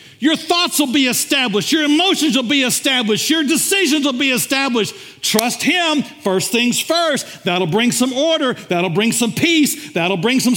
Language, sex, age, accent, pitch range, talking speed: English, male, 50-69, American, 180-280 Hz, 175 wpm